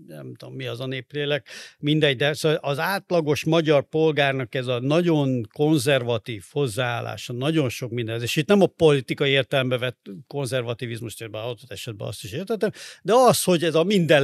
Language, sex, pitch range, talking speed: Hungarian, male, 130-160 Hz, 175 wpm